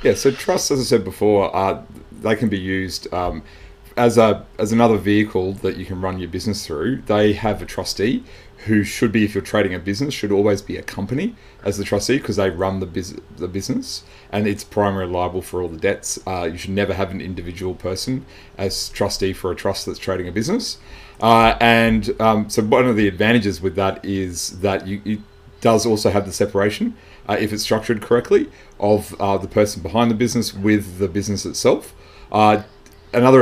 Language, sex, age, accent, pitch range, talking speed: English, male, 30-49, Australian, 95-110 Hz, 205 wpm